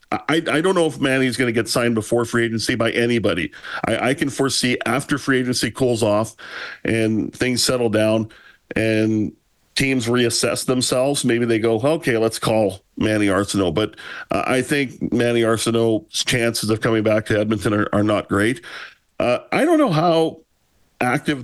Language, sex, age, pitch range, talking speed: English, male, 40-59, 110-130 Hz, 175 wpm